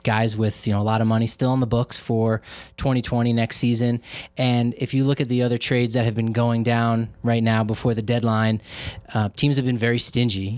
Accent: American